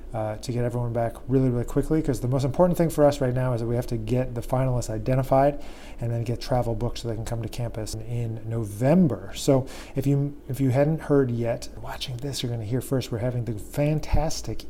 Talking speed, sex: 235 wpm, male